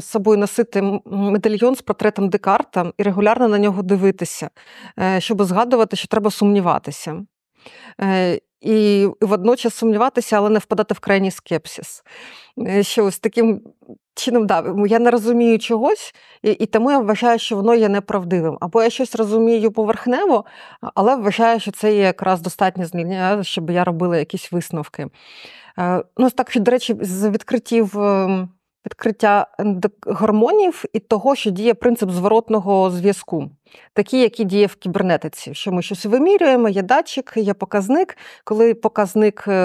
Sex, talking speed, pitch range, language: female, 140 wpm, 185-230 Hz, Ukrainian